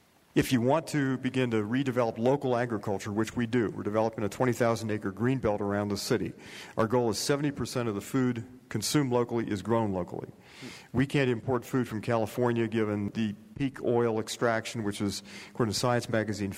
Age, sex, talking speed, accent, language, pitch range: 50-69, male, 180 wpm, American, English, 105-125 Hz